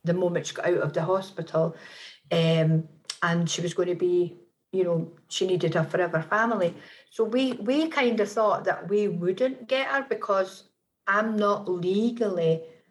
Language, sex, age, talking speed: English, female, 50-69, 170 wpm